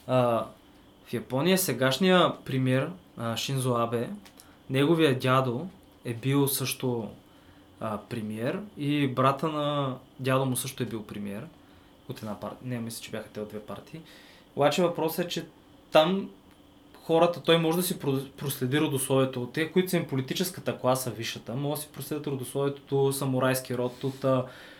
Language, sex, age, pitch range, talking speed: Bulgarian, male, 20-39, 115-145 Hz, 155 wpm